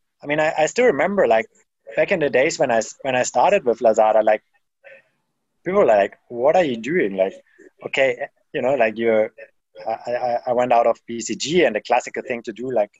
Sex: male